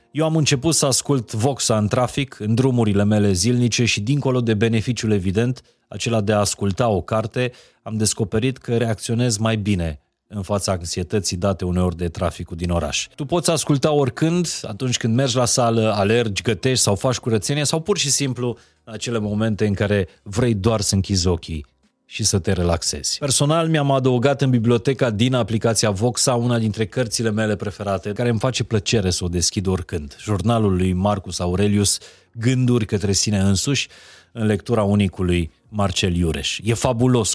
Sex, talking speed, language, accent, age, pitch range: male, 170 wpm, Romanian, native, 30-49, 100-125 Hz